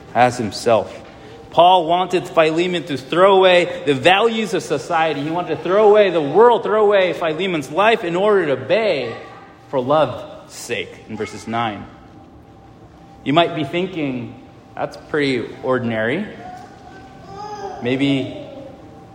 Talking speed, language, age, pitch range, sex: 130 wpm, English, 30-49, 125-175 Hz, male